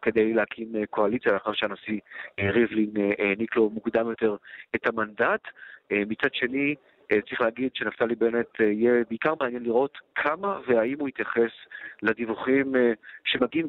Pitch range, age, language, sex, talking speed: 110-130 Hz, 40-59, Hebrew, male, 125 wpm